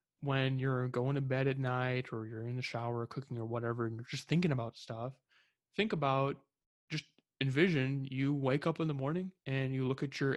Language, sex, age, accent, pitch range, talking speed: English, male, 20-39, American, 120-140 Hz, 215 wpm